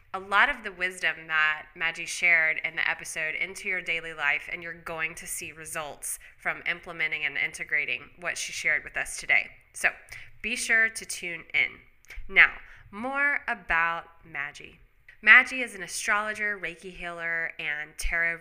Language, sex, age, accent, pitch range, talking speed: English, female, 20-39, American, 160-205 Hz, 160 wpm